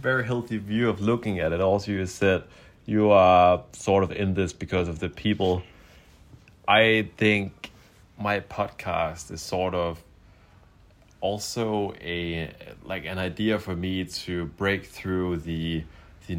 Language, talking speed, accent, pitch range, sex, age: English, 145 wpm, German, 75-95 Hz, male, 30-49